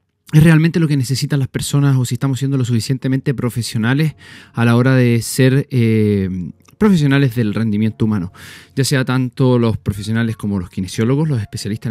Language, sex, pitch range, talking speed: Spanish, male, 115-165 Hz, 170 wpm